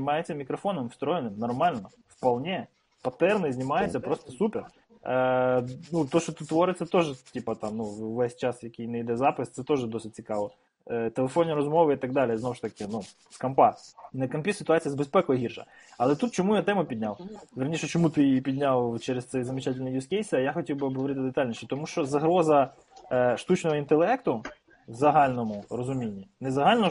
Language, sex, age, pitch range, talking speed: Ukrainian, male, 20-39, 130-165 Hz, 170 wpm